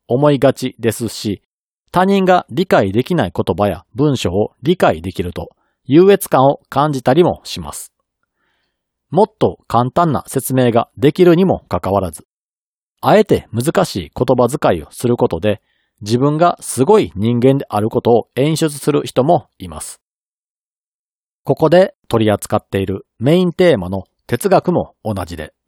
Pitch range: 105-165 Hz